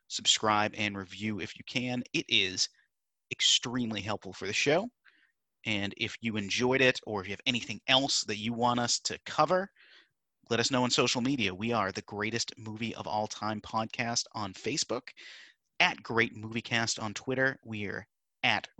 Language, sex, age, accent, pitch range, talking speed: English, male, 30-49, American, 105-125 Hz, 180 wpm